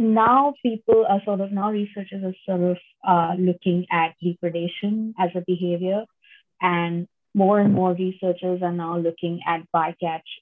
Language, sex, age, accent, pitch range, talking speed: English, female, 20-39, Indian, 170-205 Hz, 155 wpm